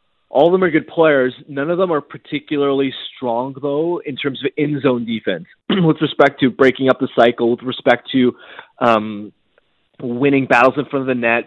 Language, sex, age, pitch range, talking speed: English, male, 20-39, 120-145 Hz, 190 wpm